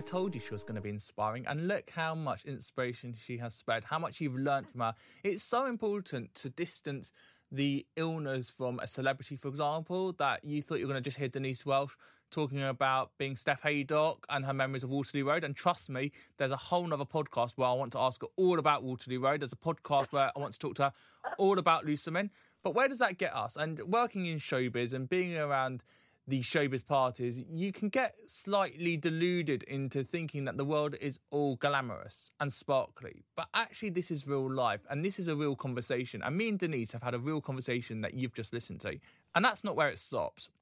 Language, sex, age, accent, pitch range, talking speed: English, male, 20-39, British, 130-170 Hz, 225 wpm